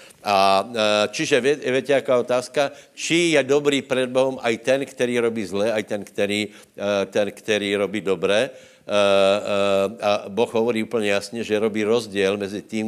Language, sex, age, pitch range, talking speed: Slovak, male, 60-79, 100-120 Hz, 150 wpm